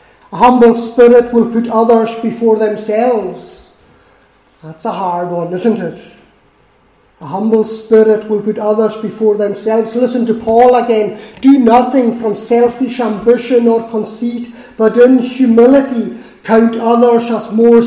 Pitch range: 215-255 Hz